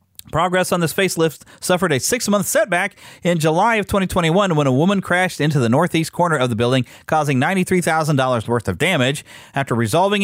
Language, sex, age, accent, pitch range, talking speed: English, male, 40-59, American, 145-205 Hz, 175 wpm